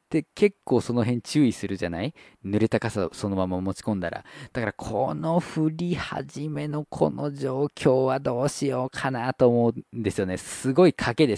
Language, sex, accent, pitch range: Japanese, male, native, 105-170 Hz